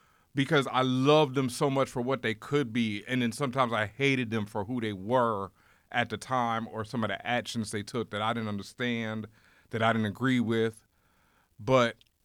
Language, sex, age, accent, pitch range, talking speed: English, male, 30-49, American, 115-145 Hz, 200 wpm